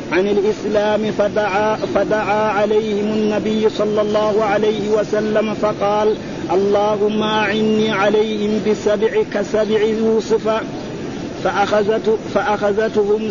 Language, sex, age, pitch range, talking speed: Arabic, male, 50-69, 210-215 Hz, 85 wpm